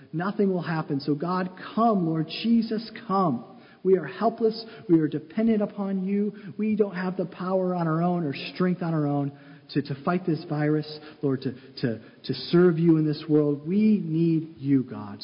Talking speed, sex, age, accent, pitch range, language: 190 wpm, male, 40-59, American, 135-190 Hz, English